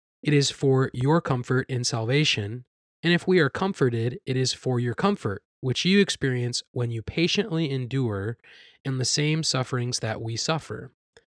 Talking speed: 165 wpm